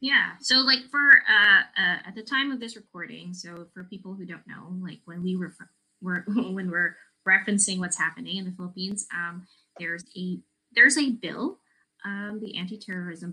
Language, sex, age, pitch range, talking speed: English, female, 20-39, 170-215 Hz, 180 wpm